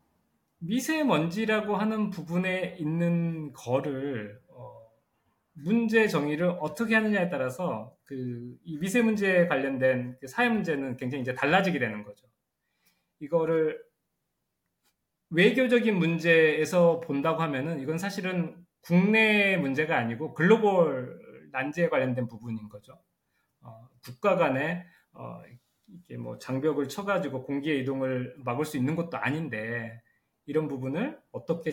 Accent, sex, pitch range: native, male, 130-195 Hz